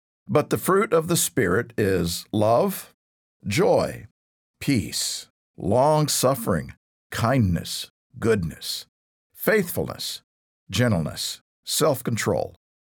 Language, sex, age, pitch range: English, male, 50-69, 100-145 Hz